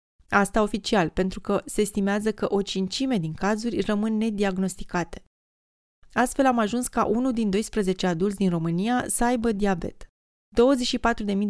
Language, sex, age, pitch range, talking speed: Romanian, female, 20-39, 180-225 Hz, 140 wpm